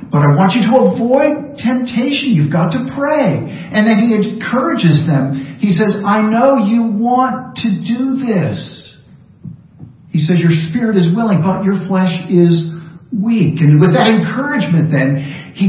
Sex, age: male, 50-69